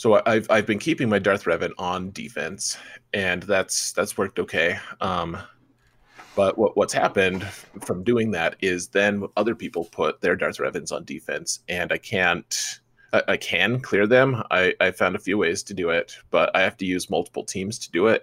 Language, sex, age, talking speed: English, male, 30-49, 200 wpm